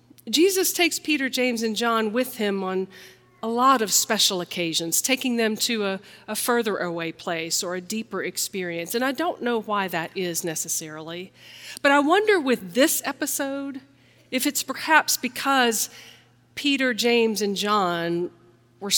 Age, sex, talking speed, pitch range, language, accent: 40-59, female, 155 wpm, 175-245 Hz, English, American